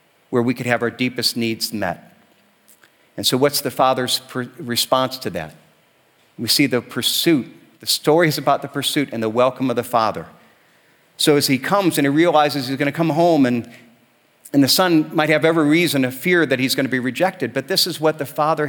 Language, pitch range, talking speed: English, 140-170 Hz, 200 wpm